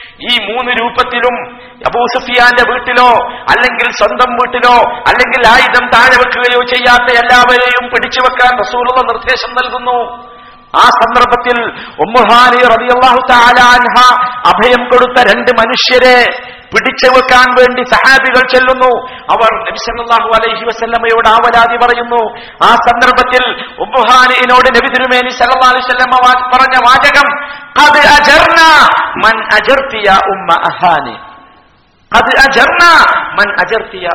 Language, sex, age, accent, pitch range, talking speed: Malayalam, male, 50-69, native, 180-250 Hz, 65 wpm